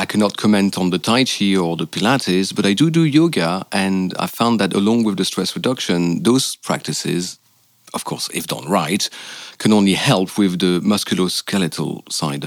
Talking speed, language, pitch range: 185 wpm, English, 95-120 Hz